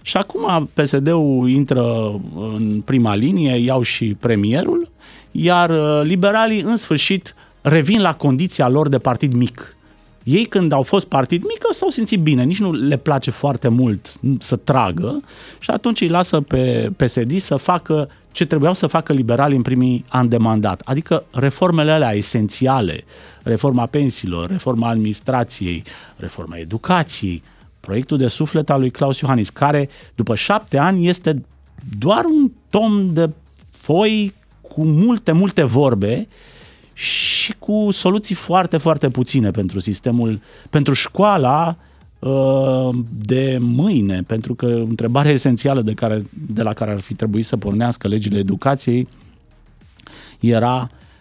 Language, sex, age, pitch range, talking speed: Romanian, male, 30-49, 115-165 Hz, 135 wpm